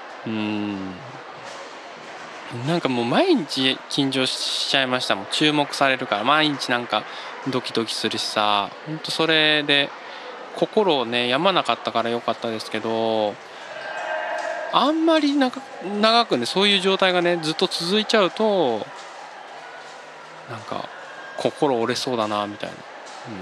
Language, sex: Japanese, male